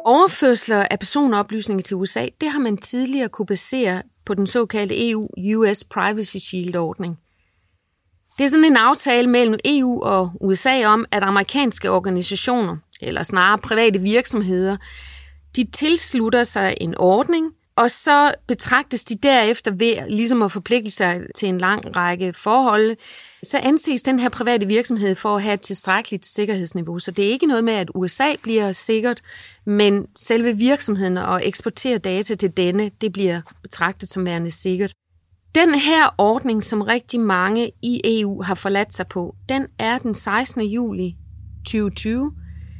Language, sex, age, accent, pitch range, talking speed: Danish, female, 30-49, native, 185-240 Hz, 150 wpm